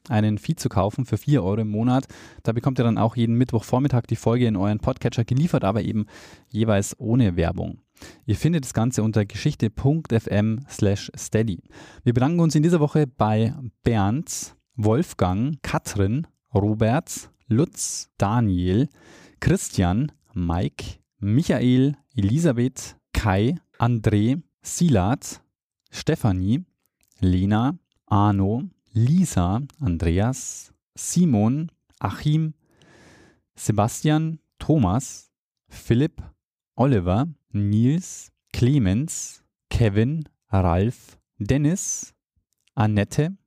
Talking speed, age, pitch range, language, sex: 100 wpm, 20-39, 105-145 Hz, German, male